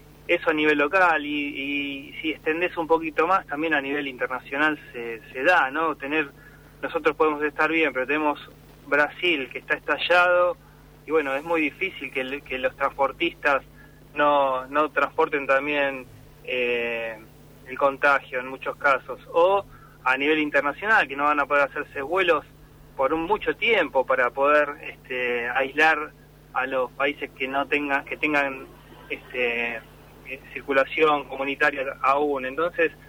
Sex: male